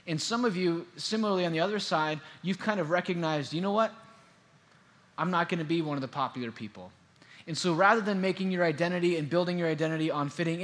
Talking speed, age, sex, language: 215 wpm, 20-39, male, English